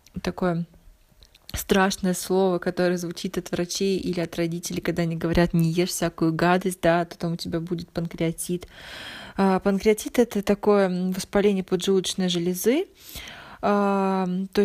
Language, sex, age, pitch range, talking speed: Russian, female, 20-39, 185-210 Hz, 125 wpm